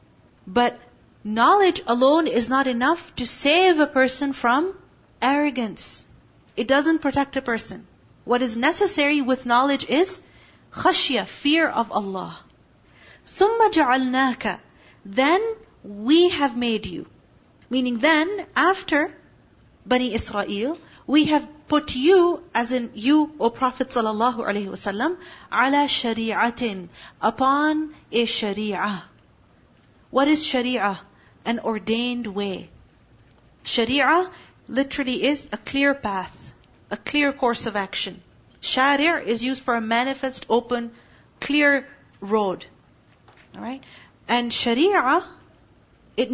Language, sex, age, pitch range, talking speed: English, female, 40-59, 230-290 Hz, 110 wpm